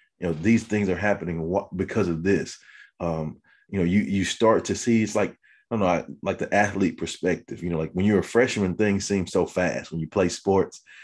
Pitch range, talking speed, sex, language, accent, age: 85-105 Hz, 225 wpm, male, English, American, 30-49